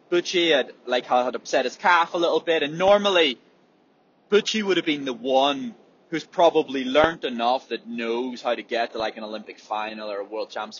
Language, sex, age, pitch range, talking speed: English, male, 20-39, 115-175 Hz, 200 wpm